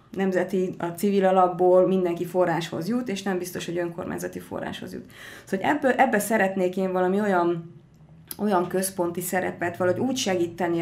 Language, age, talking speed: Hungarian, 30-49, 155 wpm